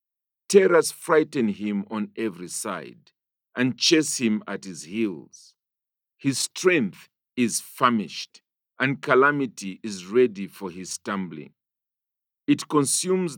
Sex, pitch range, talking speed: male, 105-145 Hz, 110 wpm